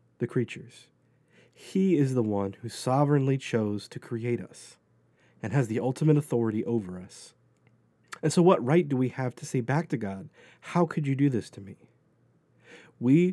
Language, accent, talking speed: English, American, 175 wpm